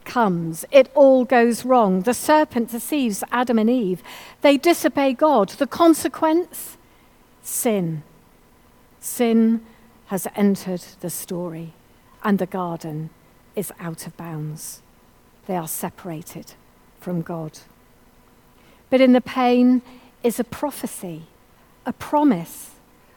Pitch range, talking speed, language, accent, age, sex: 180-255 Hz, 110 wpm, English, British, 50-69, female